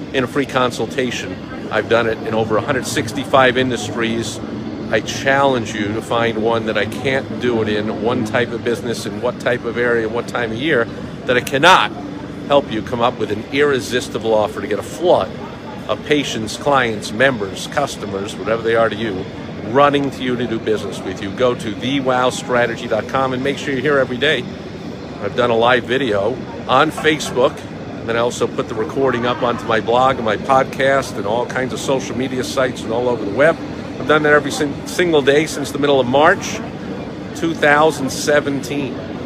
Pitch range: 115-140 Hz